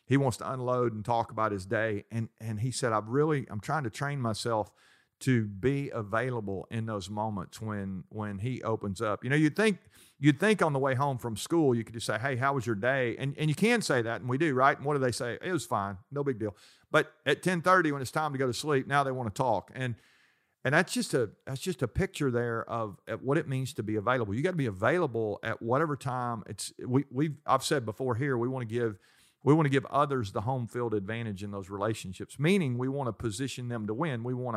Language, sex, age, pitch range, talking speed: English, male, 40-59, 110-140 Hz, 255 wpm